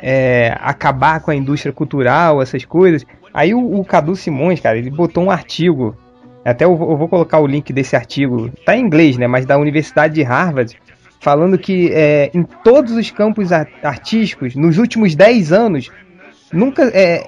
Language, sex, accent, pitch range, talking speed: Portuguese, male, Brazilian, 150-220 Hz, 165 wpm